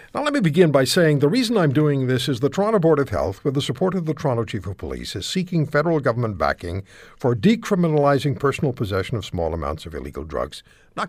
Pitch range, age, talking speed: 95-160 Hz, 60-79, 225 wpm